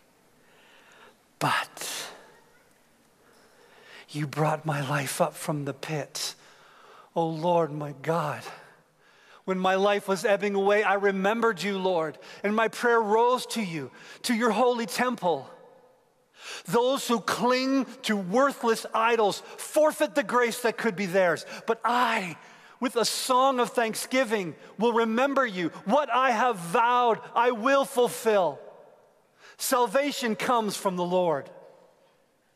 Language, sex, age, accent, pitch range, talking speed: English, male, 40-59, American, 175-250 Hz, 125 wpm